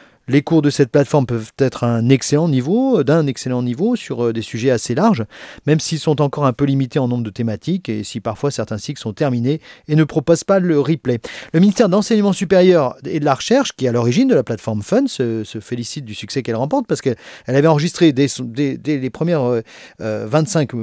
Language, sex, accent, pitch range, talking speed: French, male, French, 115-160 Hz, 215 wpm